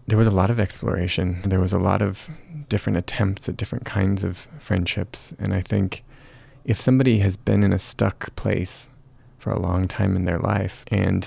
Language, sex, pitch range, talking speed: English, male, 95-125 Hz, 195 wpm